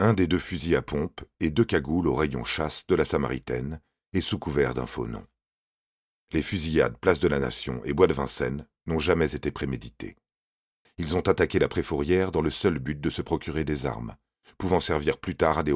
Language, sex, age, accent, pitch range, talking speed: French, male, 40-59, French, 70-85 Hz, 200 wpm